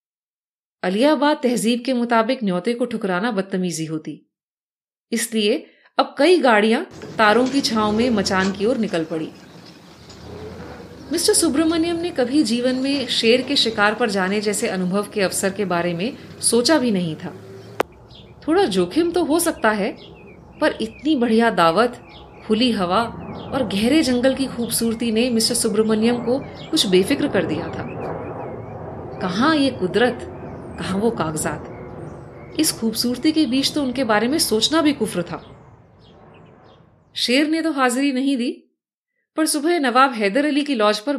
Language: Hindi